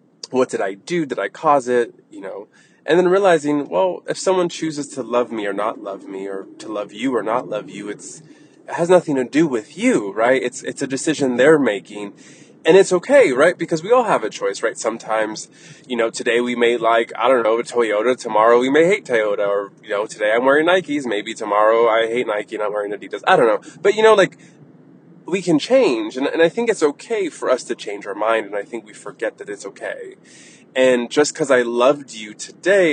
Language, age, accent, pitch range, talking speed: English, 20-39, American, 115-170 Hz, 230 wpm